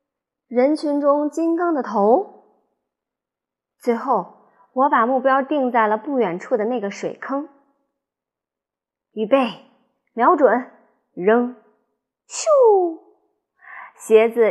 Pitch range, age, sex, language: 215-300 Hz, 20-39, female, Chinese